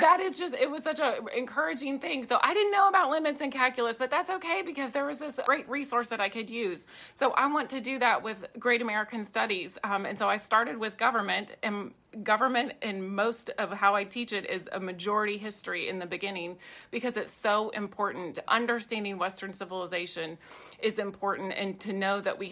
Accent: American